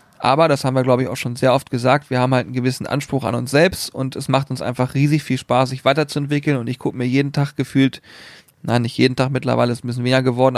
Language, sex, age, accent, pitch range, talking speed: German, male, 30-49, German, 120-140 Hz, 270 wpm